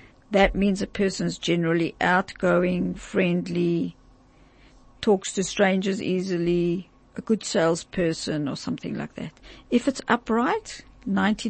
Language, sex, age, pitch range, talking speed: English, female, 60-79, 180-220 Hz, 115 wpm